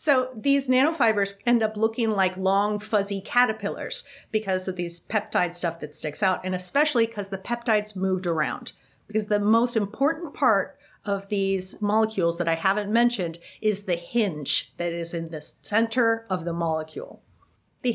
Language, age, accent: English, 40-59, American